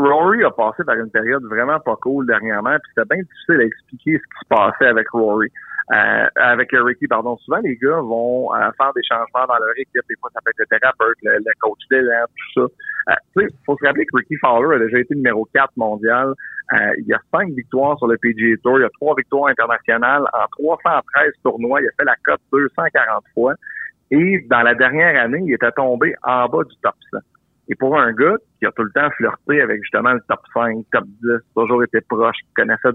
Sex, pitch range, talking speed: male, 115-135 Hz, 225 wpm